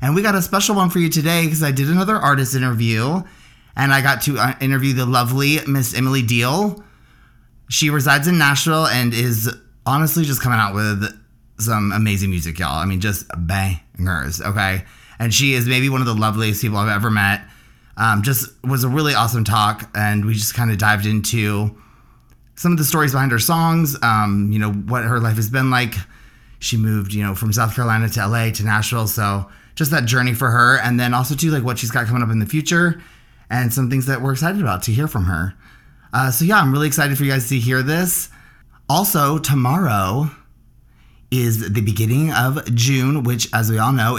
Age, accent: 30-49, American